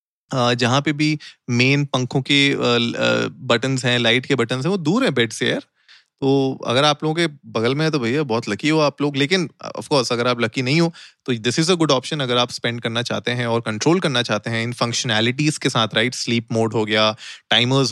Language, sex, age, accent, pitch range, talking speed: Hindi, male, 30-49, native, 115-140 Hz, 230 wpm